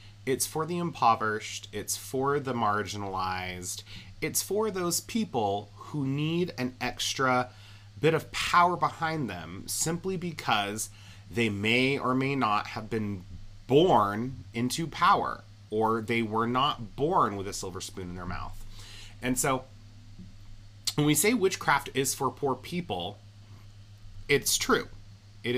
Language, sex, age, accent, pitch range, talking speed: English, male, 30-49, American, 100-125 Hz, 135 wpm